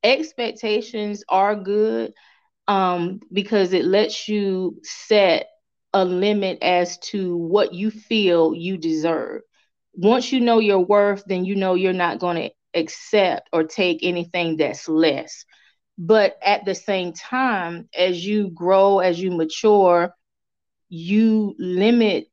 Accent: American